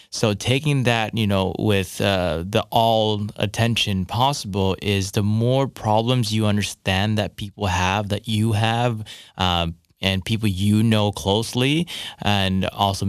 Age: 20-39